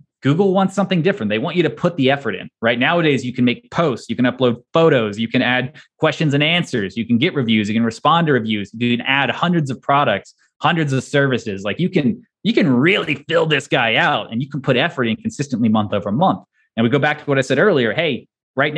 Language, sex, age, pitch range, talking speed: English, male, 20-39, 120-155 Hz, 245 wpm